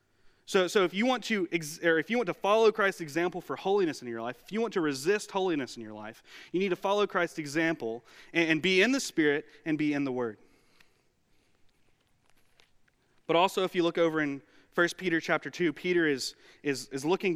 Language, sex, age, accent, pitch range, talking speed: English, male, 30-49, American, 135-175 Hz, 215 wpm